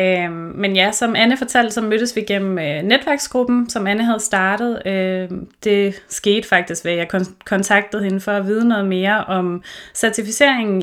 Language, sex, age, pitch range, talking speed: Danish, female, 30-49, 180-210 Hz, 155 wpm